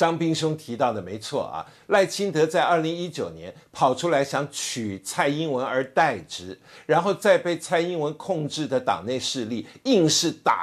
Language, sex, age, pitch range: Chinese, male, 50-69, 135-185 Hz